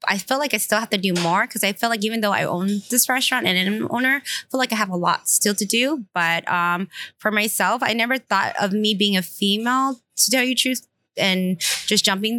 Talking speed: 255 wpm